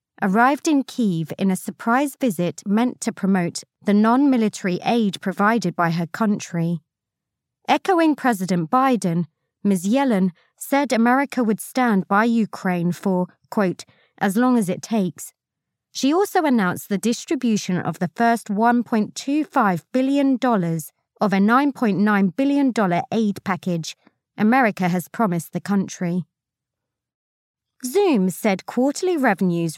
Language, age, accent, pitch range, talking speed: English, 30-49, British, 180-250 Hz, 120 wpm